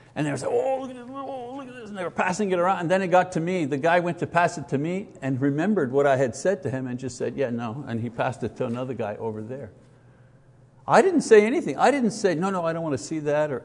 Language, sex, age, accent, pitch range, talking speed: English, male, 60-79, American, 130-195 Hz, 310 wpm